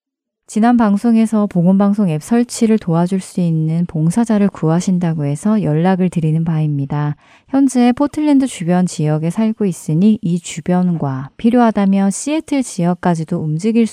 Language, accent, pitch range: Korean, native, 160-225 Hz